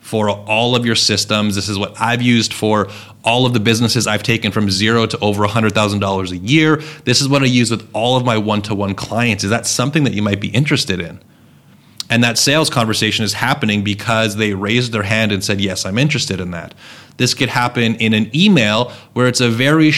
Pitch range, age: 105-130 Hz, 30-49